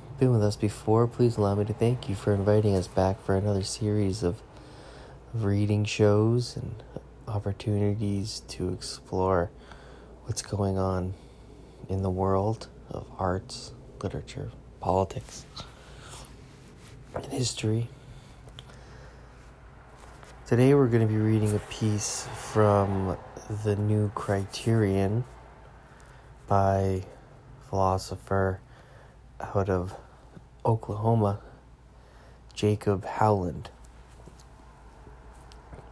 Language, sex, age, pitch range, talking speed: English, male, 20-39, 95-115 Hz, 95 wpm